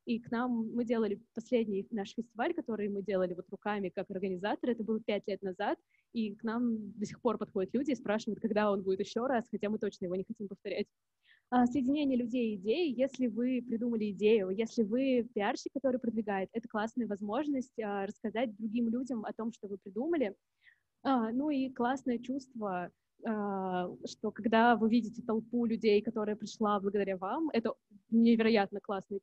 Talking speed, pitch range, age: 170 wpm, 205-245 Hz, 20-39